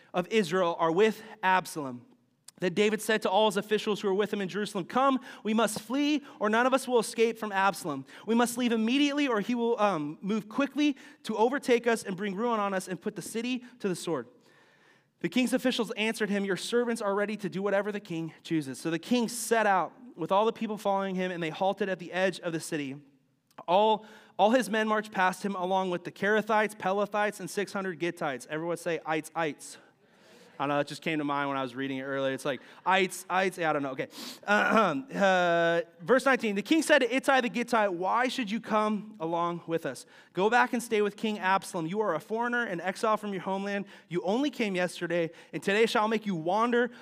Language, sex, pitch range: English, male, 175-225 Hz